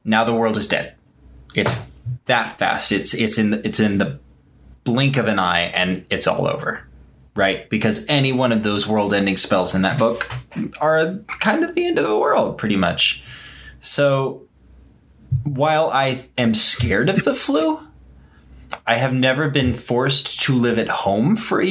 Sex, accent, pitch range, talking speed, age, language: male, American, 105-145 Hz, 170 wpm, 20-39, English